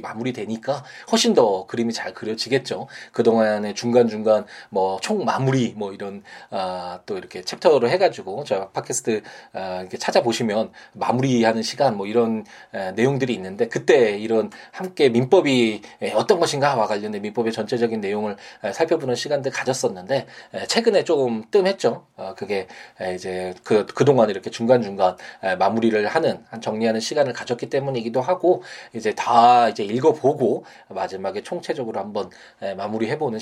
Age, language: 20-39, Korean